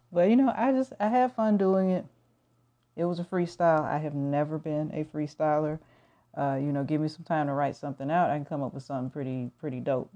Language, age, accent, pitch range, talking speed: English, 40-59, American, 130-175 Hz, 235 wpm